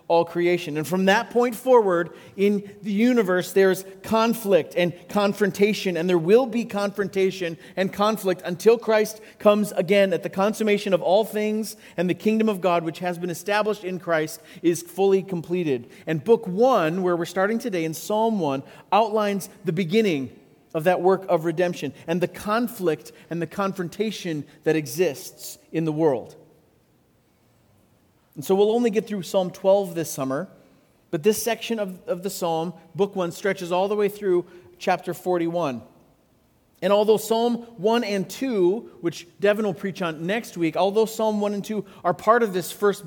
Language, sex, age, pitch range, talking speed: English, male, 40-59, 170-210 Hz, 170 wpm